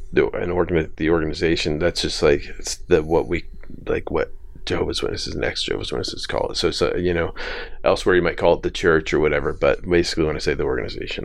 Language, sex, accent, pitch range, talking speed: English, male, American, 80-95 Hz, 215 wpm